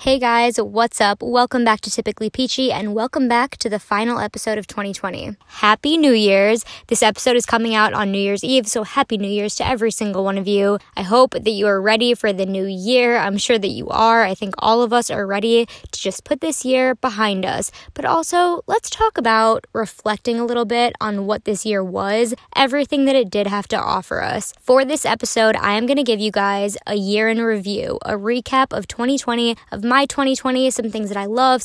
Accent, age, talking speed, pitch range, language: American, 10-29, 225 wpm, 205-240 Hz, English